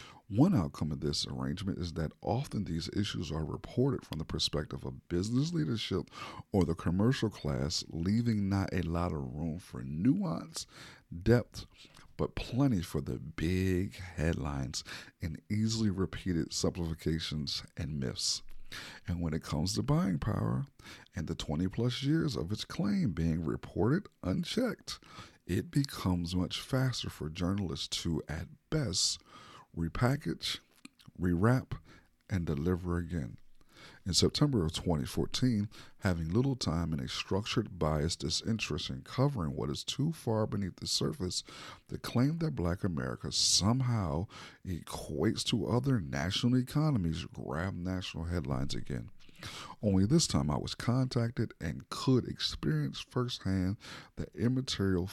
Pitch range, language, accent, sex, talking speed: 80-115 Hz, English, American, male, 135 wpm